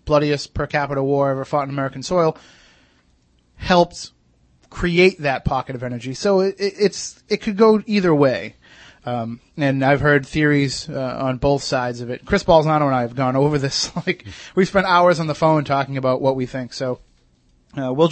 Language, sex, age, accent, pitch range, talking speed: English, male, 30-49, American, 135-165 Hz, 190 wpm